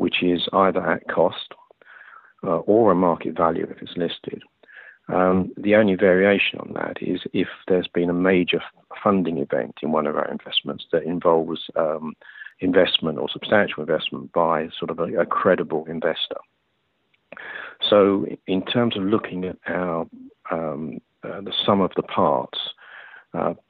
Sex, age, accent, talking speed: male, 50-69, British, 155 wpm